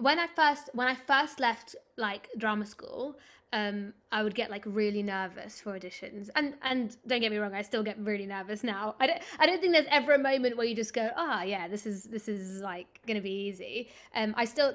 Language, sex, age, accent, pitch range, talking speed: English, female, 20-39, British, 200-240 Hz, 235 wpm